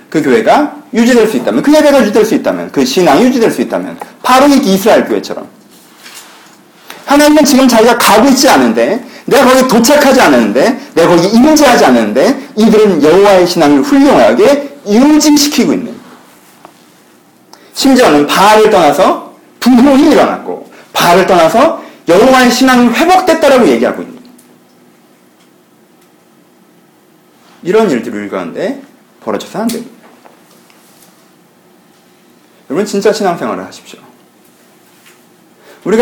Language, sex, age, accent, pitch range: Korean, male, 40-59, native, 205-270 Hz